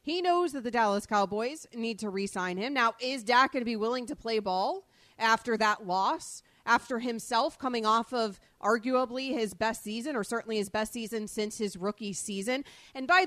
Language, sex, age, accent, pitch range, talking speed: English, female, 30-49, American, 195-235 Hz, 195 wpm